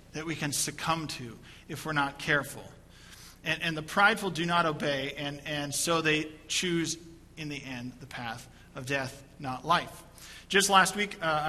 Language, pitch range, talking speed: English, 150-185 Hz, 180 wpm